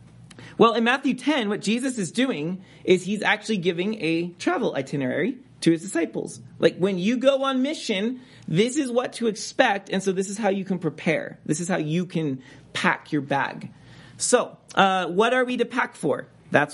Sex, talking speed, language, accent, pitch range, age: male, 195 wpm, English, American, 155-220 Hz, 30-49